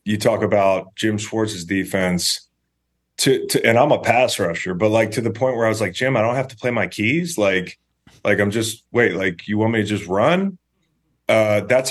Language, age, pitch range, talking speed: English, 30-49, 95-115 Hz, 220 wpm